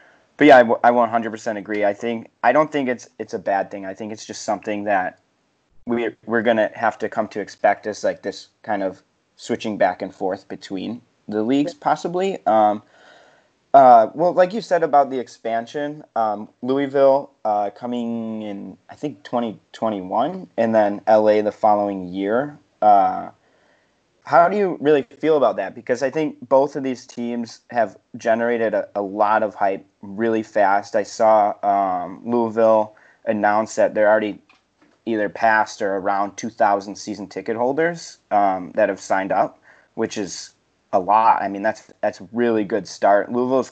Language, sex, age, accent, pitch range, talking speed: English, male, 30-49, American, 105-135 Hz, 170 wpm